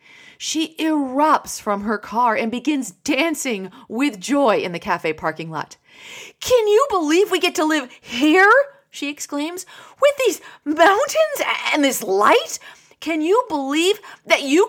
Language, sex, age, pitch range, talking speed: English, female, 30-49, 190-310 Hz, 145 wpm